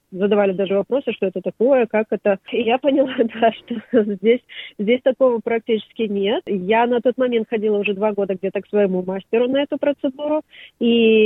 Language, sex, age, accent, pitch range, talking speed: Russian, female, 30-49, native, 195-230 Hz, 180 wpm